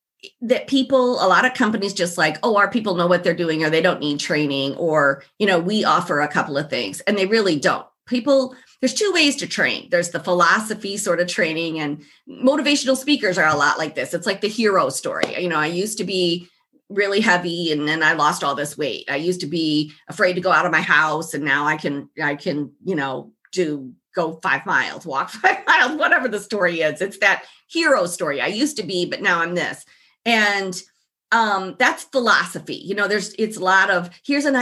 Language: English